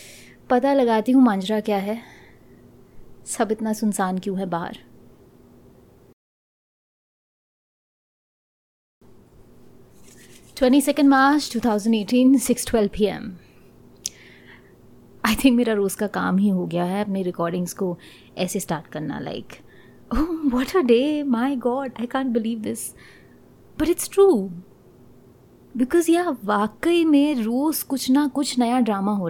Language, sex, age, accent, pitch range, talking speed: Hindi, female, 20-39, native, 205-280 Hz, 115 wpm